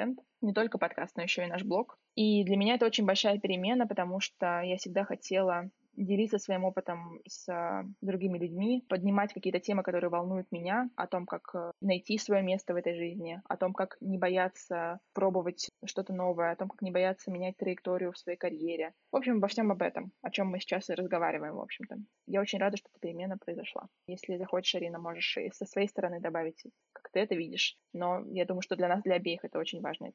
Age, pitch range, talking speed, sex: 20-39, 175-210 Hz, 205 wpm, female